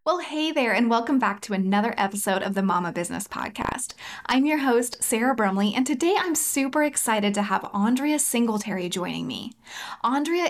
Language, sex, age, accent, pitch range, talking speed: English, female, 20-39, American, 200-260 Hz, 175 wpm